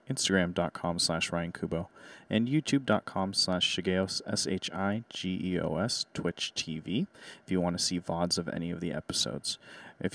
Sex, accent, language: male, American, English